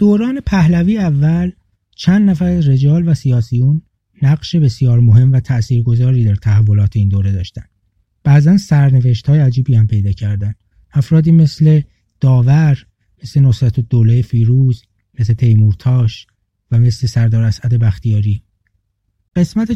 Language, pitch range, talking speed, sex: English, 110-150 Hz, 120 wpm, male